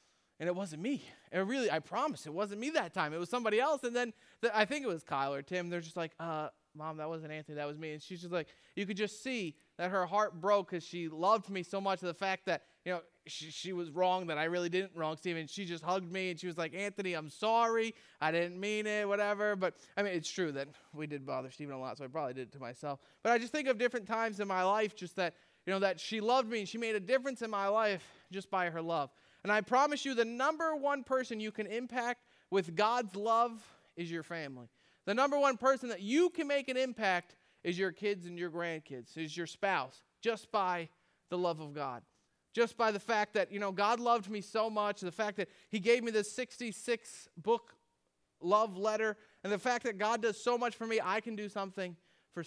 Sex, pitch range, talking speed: male, 170-225 Hz, 245 wpm